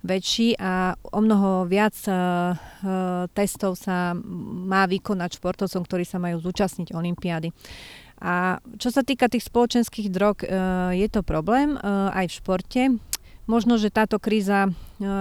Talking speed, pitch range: 140 wpm, 180-200 Hz